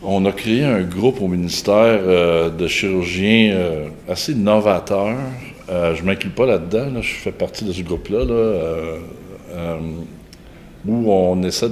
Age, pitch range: 60-79, 85-105 Hz